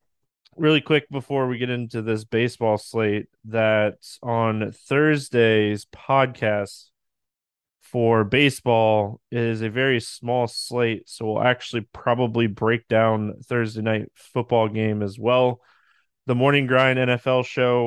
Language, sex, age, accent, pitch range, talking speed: English, male, 20-39, American, 115-135 Hz, 125 wpm